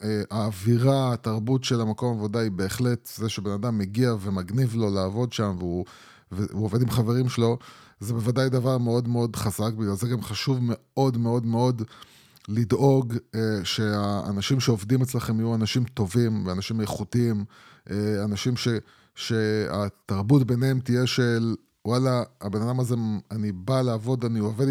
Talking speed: 145 wpm